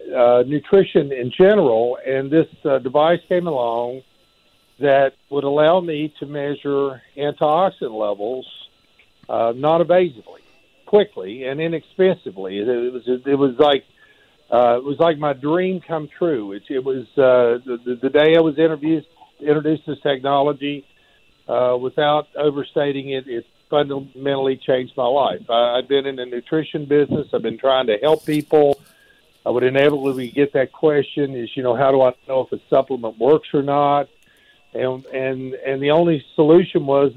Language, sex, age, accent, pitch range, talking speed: English, male, 60-79, American, 125-150 Hz, 155 wpm